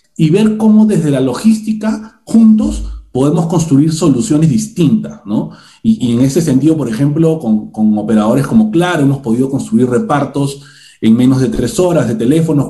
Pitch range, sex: 120-175 Hz, male